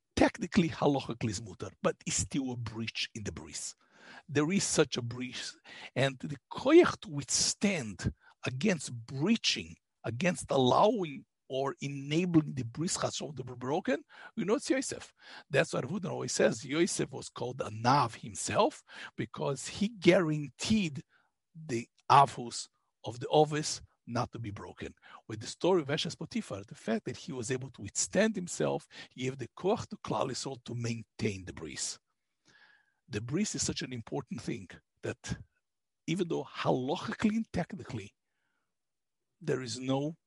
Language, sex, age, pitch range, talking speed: English, male, 60-79, 120-180 Hz, 150 wpm